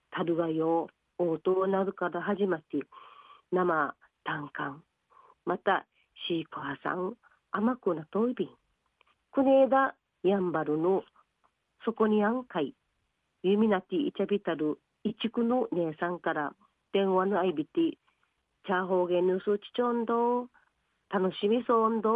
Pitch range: 175-235 Hz